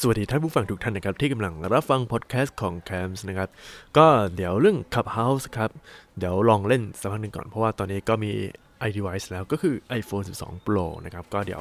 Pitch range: 95-120 Hz